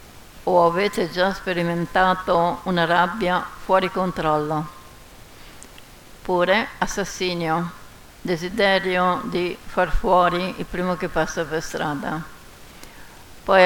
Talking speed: 90 wpm